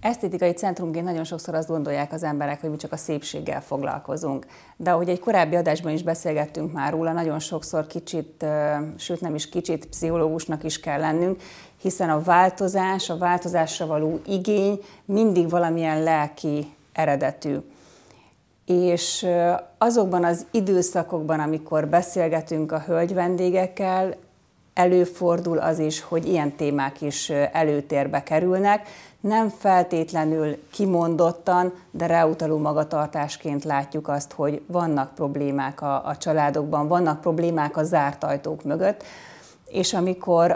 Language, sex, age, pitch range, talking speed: Hungarian, female, 30-49, 150-175 Hz, 125 wpm